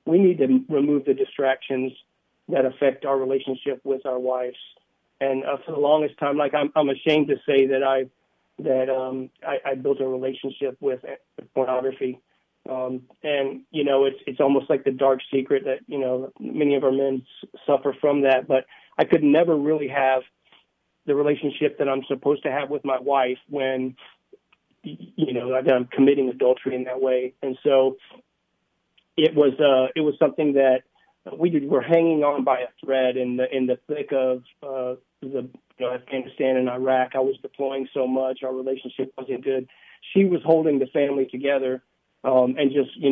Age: 40-59